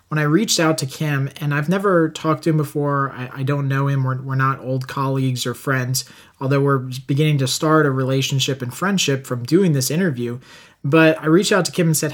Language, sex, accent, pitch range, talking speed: English, male, American, 135-160 Hz, 225 wpm